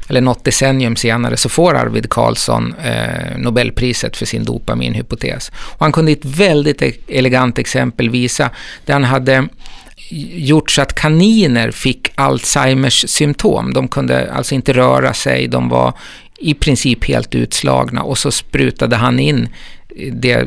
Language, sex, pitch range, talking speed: Swedish, male, 115-145 Hz, 140 wpm